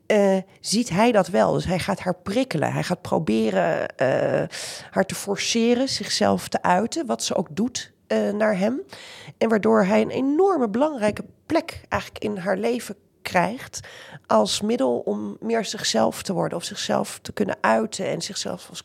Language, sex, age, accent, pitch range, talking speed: Dutch, female, 40-59, Dutch, 185-235 Hz, 170 wpm